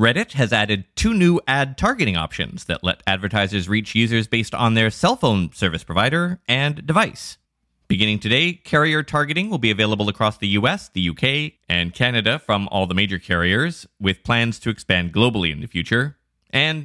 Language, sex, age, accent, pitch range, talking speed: English, male, 30-49, American, 90-135 Hz, 180 wpm